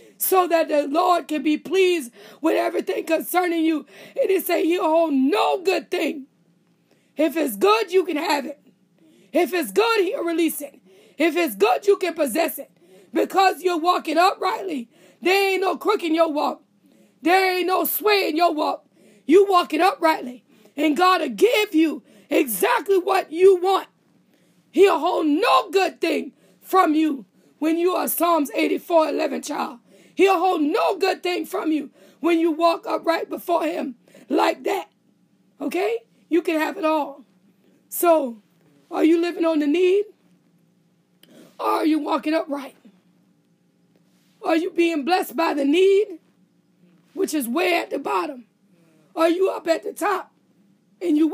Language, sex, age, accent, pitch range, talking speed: English, female, 20-39, American, 290-360 Hz, 160 wpm